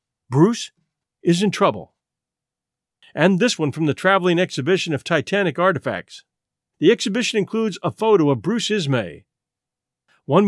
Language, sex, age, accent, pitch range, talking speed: English, male, 50-69, American, 145-205 Hz, 130 wpm